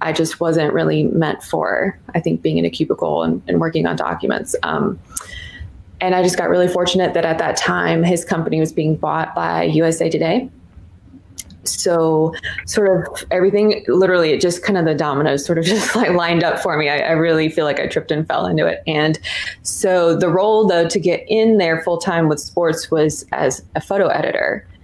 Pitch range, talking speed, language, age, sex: 155-180 Hz, 205 wpm, English, 20-39, female